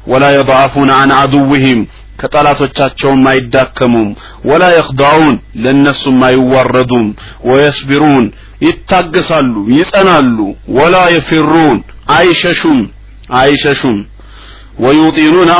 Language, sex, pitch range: Amharic, male, 130-155 Hz